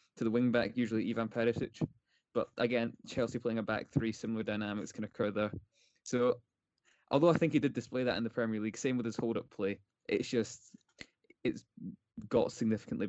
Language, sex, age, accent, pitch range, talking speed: English, male, 10-29, British, 105-120 Hz, 185 wpm